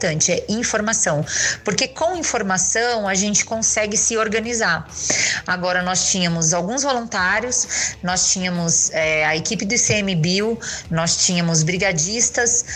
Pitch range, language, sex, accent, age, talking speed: 180-225 Hz, Portuguese, female, Brazilian, 20-39, 115 wpm